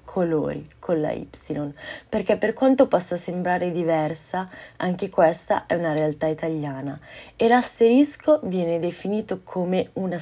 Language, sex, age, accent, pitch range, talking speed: Italian, female, 20-39, native, 160-210 Hz, 130 wpm